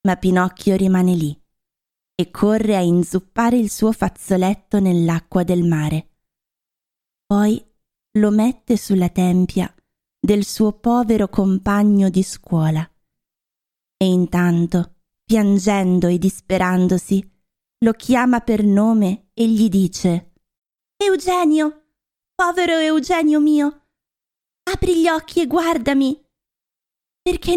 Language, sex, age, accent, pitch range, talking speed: Italian, female, 20-39, native, 205-295 Hz, 100 wpm